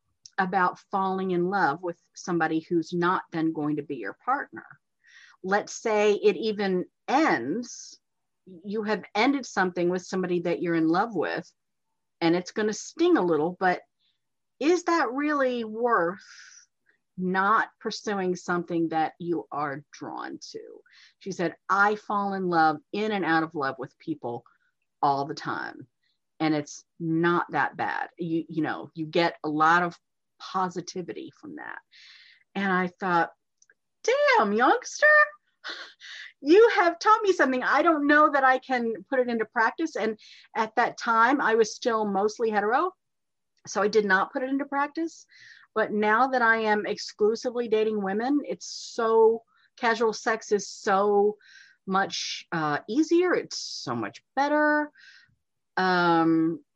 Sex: female